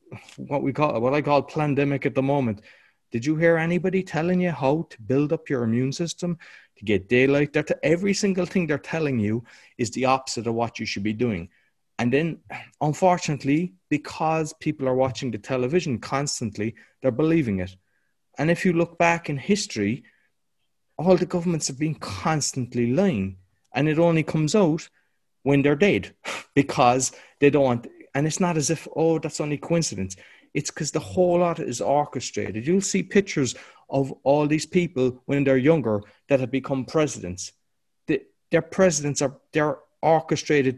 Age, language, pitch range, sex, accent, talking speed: 30-49, English, 125-165 Hz, male, Irish, 170 wpm